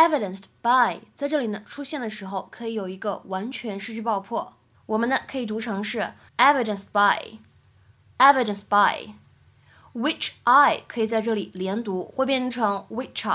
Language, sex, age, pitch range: Chinese, female, 20-39, 205-280 Hz